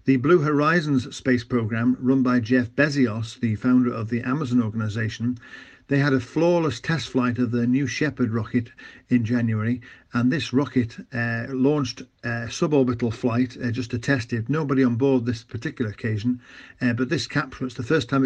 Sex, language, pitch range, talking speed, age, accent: male, English, 120-135 Hz, 180 wpm, 50-69, British